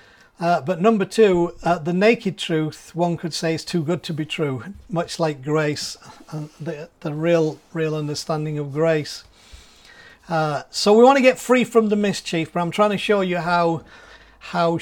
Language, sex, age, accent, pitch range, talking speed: English, male, 40-59, British, 165-210 Hz, 180 wpm